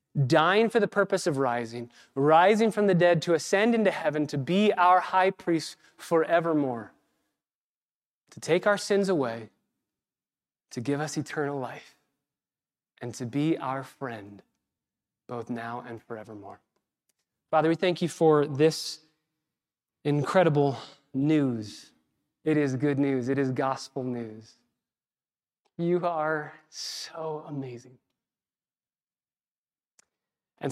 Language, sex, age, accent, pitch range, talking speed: English, male, 20-39, American, 140-175 Hz, 115 wpm